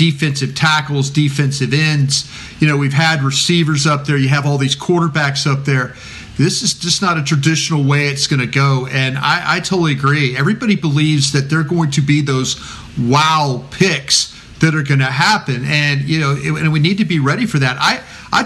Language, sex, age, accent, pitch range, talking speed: English, male, 40-59, American, 140-170 Hz, 205 wpm